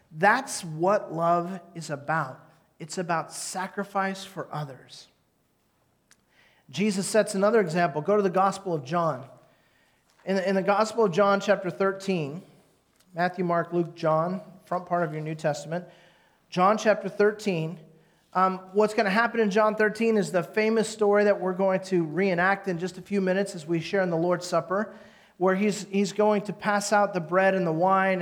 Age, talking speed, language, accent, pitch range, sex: 40-59, 170 wpm, English, American, 175-210 Hz, male